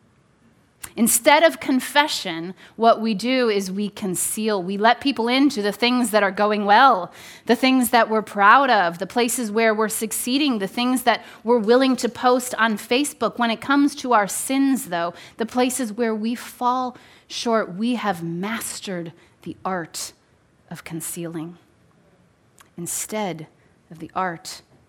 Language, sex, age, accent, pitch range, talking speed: English, female, 30-49, American, 195-255 Hz, 150 wpm